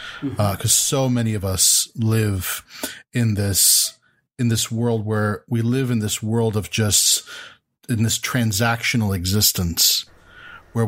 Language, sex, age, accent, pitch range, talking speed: English, male, 40-59, American, 105-120 Hz, 140 wpm